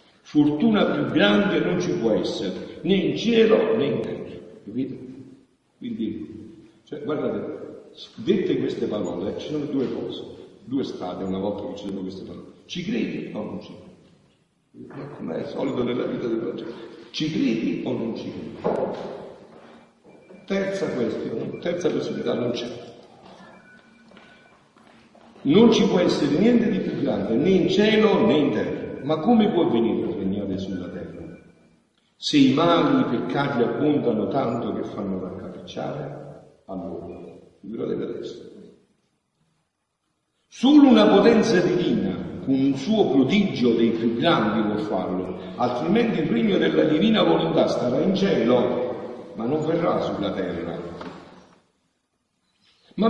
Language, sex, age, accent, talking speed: Italian, male, 60-79, native, 135 wpm